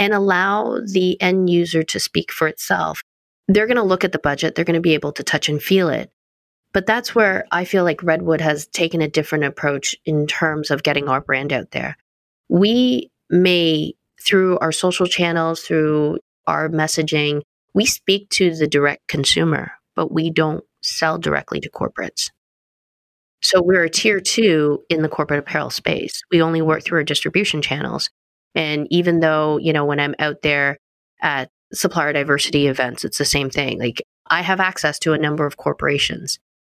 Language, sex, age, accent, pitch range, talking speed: English, female, 20-39, American, 145-180 Hz, 180 wpm